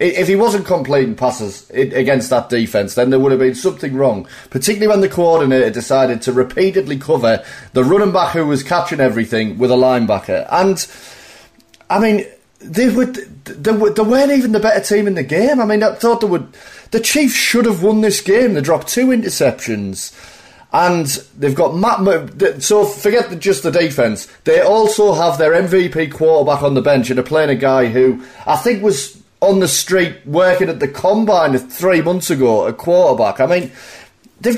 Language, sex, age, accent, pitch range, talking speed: English, male, 30-49, British, 130-200 Hz, 185 wpm